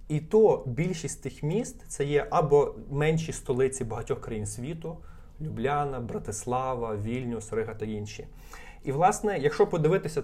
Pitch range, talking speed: 115-170 Hz, 145 wpm